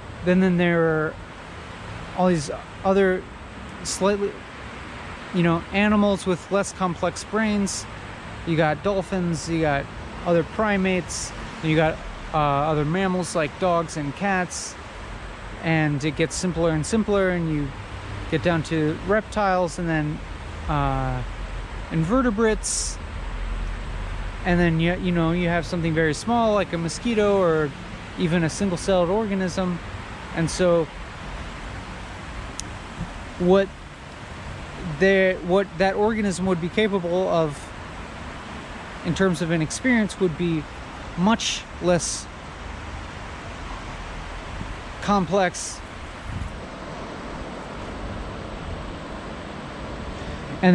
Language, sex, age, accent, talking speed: English, male, 30-49, American, 105 wpm